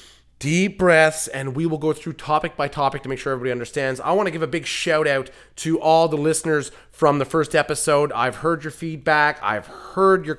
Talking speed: 220 wpm